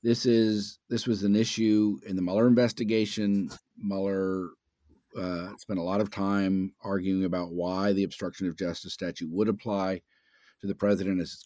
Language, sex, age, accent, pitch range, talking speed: English, male, 50-69, American, 90-105 Hz, 170 wpm